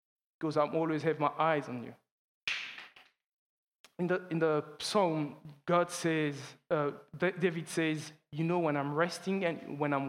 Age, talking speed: 20-39, 155 wpm